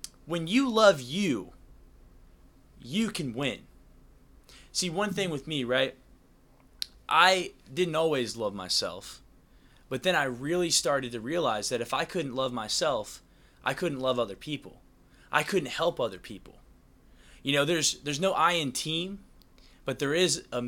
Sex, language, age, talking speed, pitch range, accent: male, English, 20-39, 155 wpm, 130-190 Hz, American